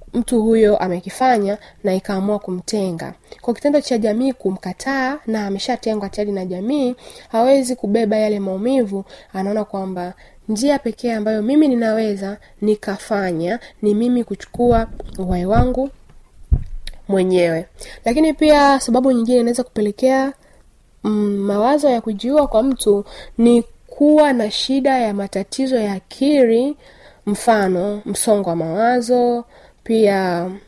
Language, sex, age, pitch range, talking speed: Swahili, female, 20-39, 195-240 Hz, 115 wpm